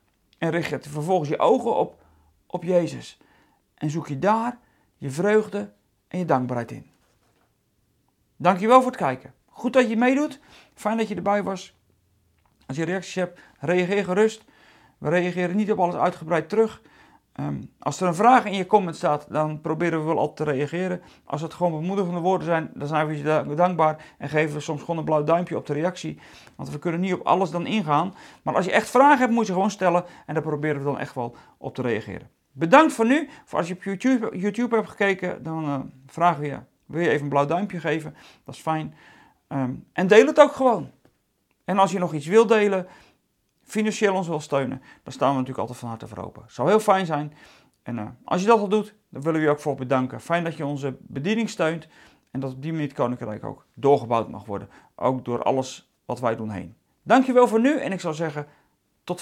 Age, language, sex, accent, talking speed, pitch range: 40-59, Dutch, male, Dutch, 215 wpm, 140-195 Hz